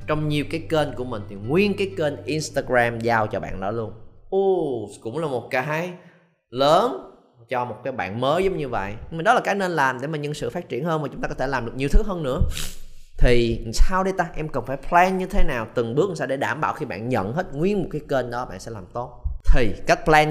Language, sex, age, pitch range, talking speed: Vietnamese, male, 20-39, 115-165 Hz, 260 wpm